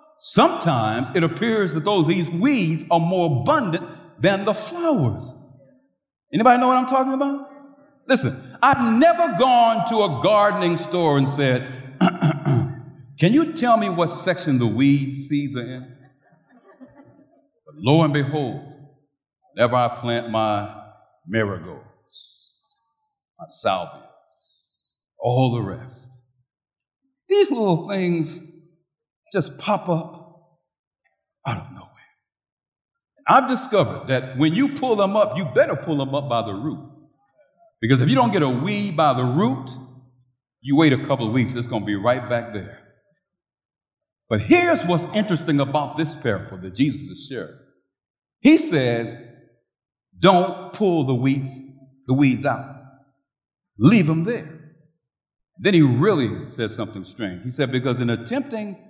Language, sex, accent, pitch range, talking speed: English, male, American, 130-210 Hz, 140 wpm